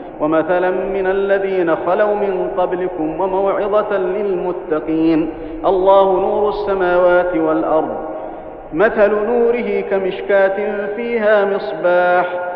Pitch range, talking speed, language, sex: 170-200 Hz, 80 wpm, Arabic, male